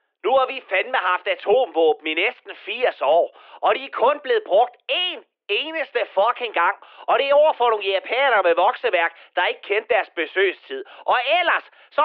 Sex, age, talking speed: male, 30-49, 180 wpm